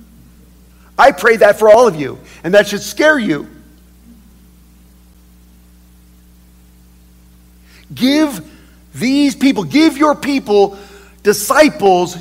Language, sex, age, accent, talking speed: English, male, 50-69, American, 95 wpm